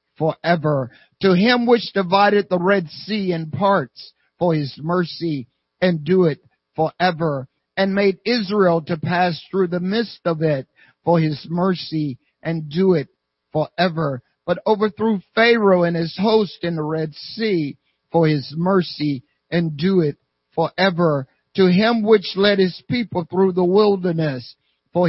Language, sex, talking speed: English, male, 145 wpm